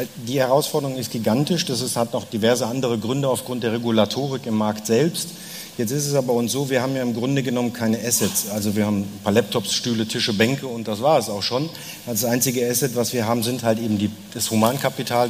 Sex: male